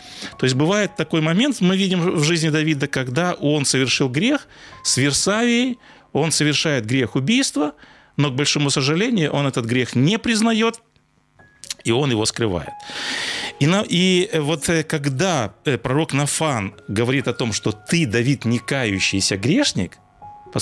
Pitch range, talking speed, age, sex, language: 120-180 Hz, 140 wpm, 30-49, male, Russian